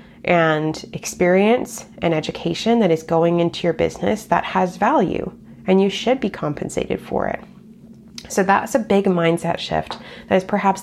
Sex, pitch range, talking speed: female, 160-190 Hz, 160 wpm